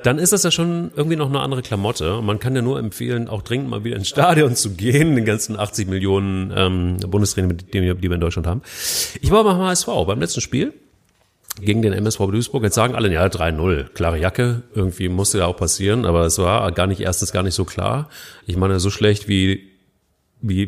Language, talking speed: German, 210 wpm